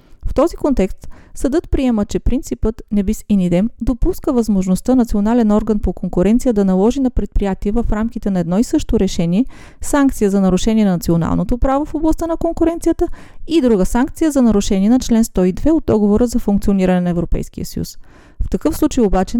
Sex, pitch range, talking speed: female, 180-245 Hz, 175 wpm